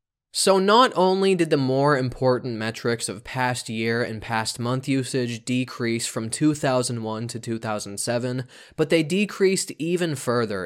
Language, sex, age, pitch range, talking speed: English, male, 20-39, 110-140 Hz, 140 wpm